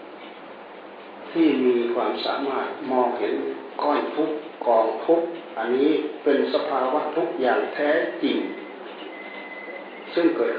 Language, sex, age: Thai, male, 60-79